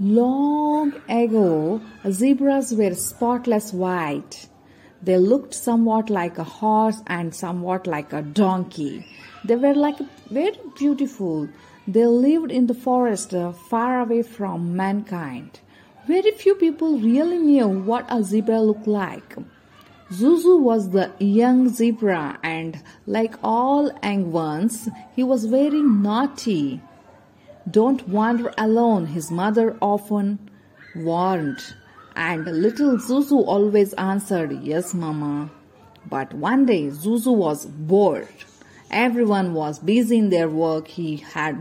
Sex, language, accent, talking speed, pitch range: female, English, Indian, 120 wpm, 180-245 Hz